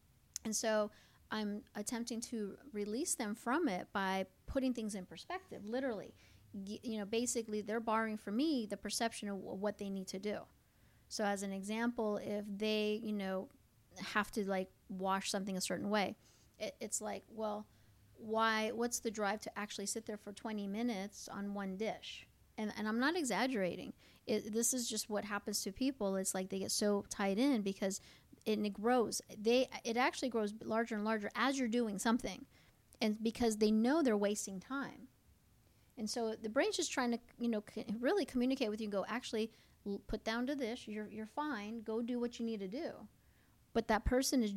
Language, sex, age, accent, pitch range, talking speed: English, female, 30-49, American, 205-240 Hz, 190 wpm